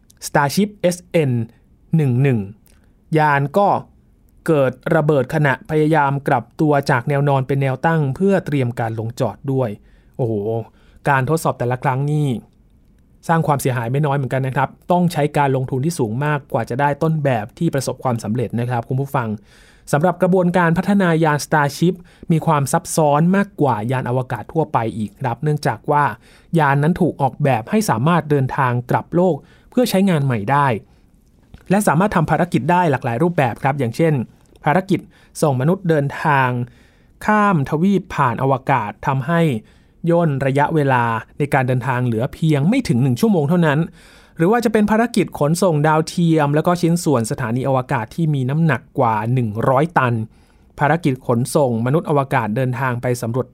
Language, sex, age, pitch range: Thai, male, 20-39, 125-165 Hz